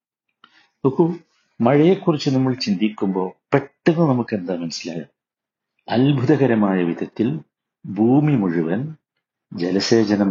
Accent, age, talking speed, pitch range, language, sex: native, 60-79, 70 wpm, 100-130 Hz, Malayalam, male